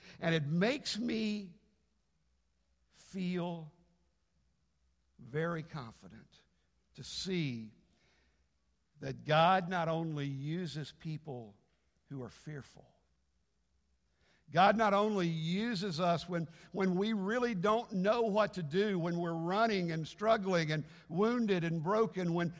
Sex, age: male, 60-79